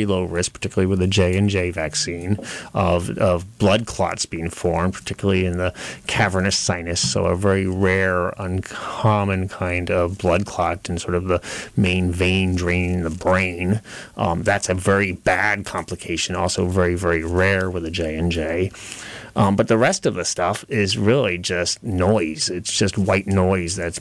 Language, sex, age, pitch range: English, male, 30-49, 90-105 Hz